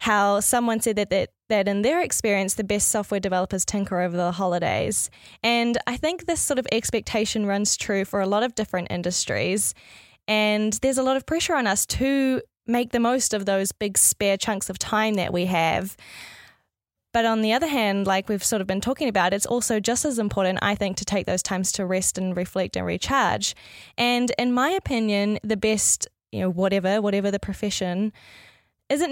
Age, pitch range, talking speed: 10-29, 195-230 Hz, 200 wpm